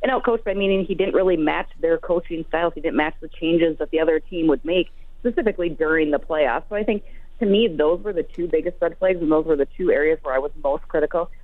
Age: 30-49